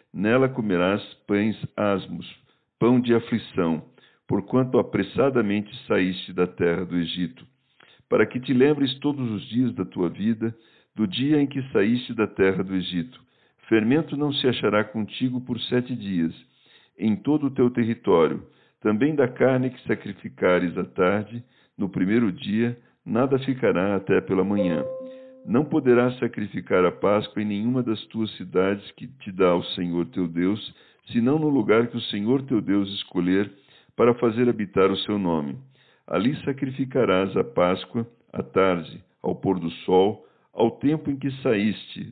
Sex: male